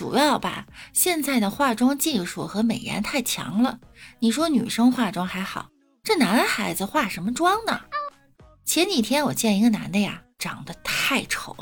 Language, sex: Chinese, female